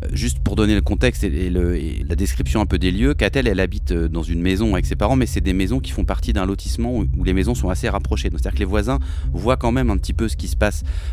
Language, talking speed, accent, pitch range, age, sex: French, 285 wpm, French, 75-100 Hz, 30-49, male